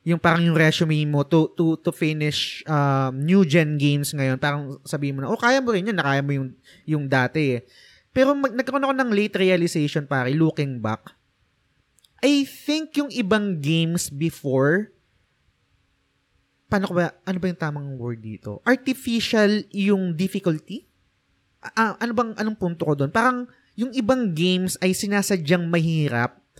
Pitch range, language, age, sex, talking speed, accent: 145-190 Hz, Filipino, 20-39, male, 155 wpm, native